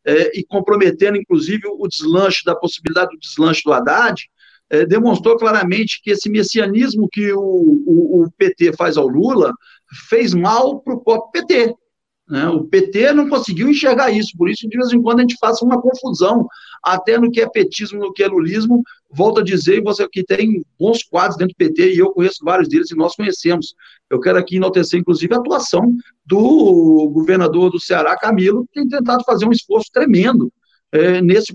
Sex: male